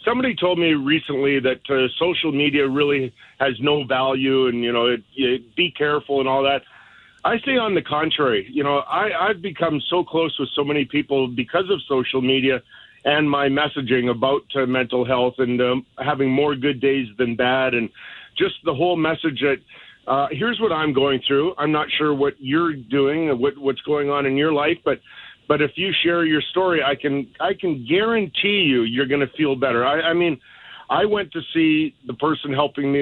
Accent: American